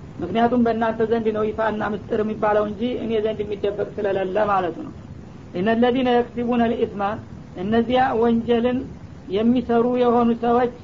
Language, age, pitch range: Amharic, 50-69, 220-235 Hz